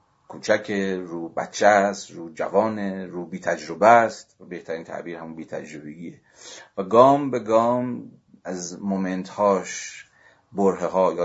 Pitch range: 80-100 Hz